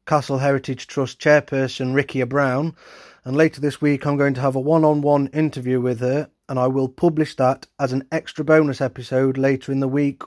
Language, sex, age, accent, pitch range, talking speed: English, male, 30-49, British, 125-145 Hz, 195 wpm